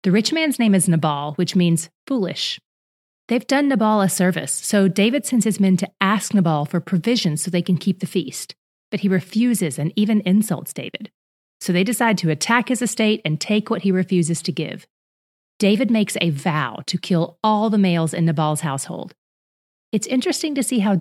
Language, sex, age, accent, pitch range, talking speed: English, female, 30-49, American, 165-215 Hz, 195 wpm